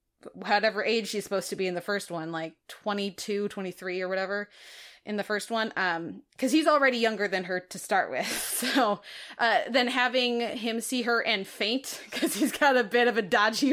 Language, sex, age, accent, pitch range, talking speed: English, female, 20-39, American, 185-240 Hz, 200 wpm